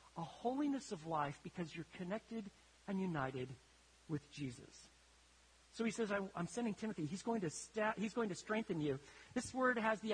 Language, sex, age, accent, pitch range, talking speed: English, male, 40-59, American, 155-230 Hz, 160 wpm